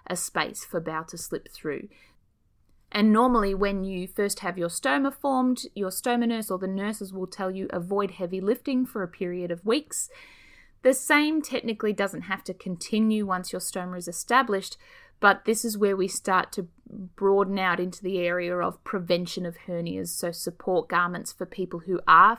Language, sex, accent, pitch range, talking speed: English, female, Australian, 175-230 Hz, 180 wpm